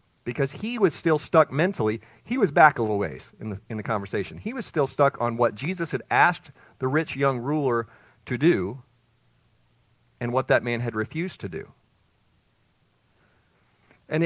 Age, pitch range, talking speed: 40-59, 115-145 Hz, 175 wpm